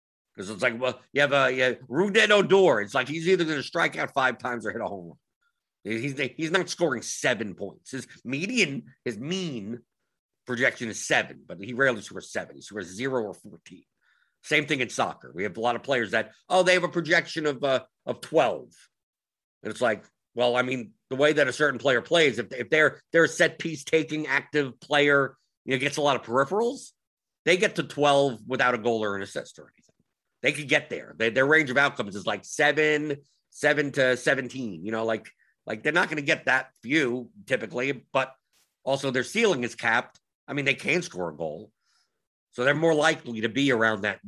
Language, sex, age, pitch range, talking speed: English, male, 50-69, 125-170 Hz, 215 wpm